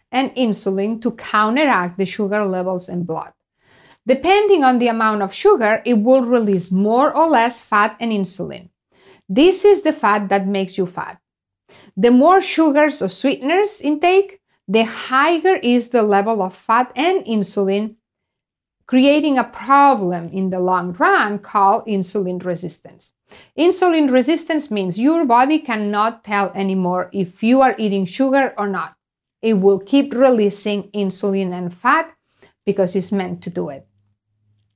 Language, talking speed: English, 145 wpm